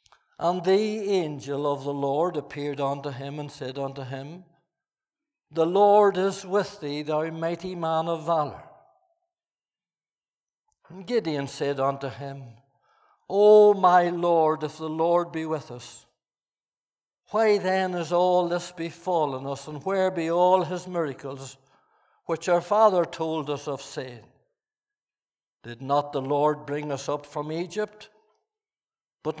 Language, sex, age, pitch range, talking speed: English, male, 60-79, 145-180 Hz, 135 wpm